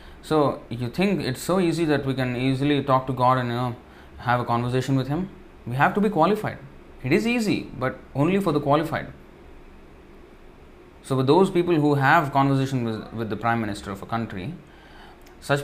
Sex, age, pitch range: male, 20-39, 115-150 Hz